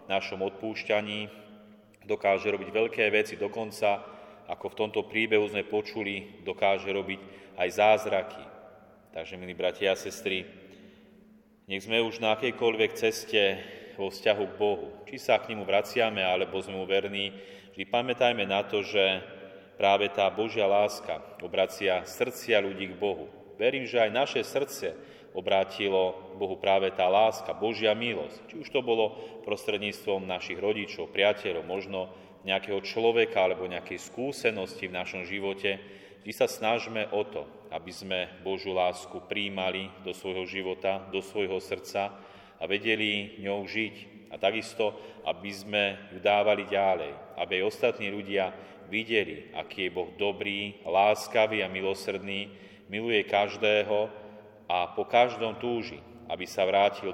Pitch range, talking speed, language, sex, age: 95-105 Hz, 140 wpm, Slovak, male, 30-49